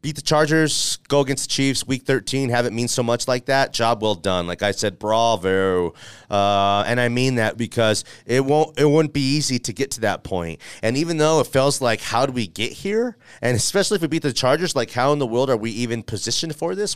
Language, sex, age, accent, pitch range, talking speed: English, male, 30-49, American, 115-145 Hz, 245 wpm